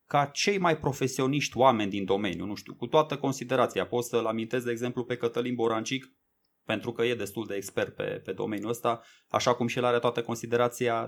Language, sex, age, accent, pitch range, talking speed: Romanian, male, 20-39, native, 115-150 Hz, 200 wpm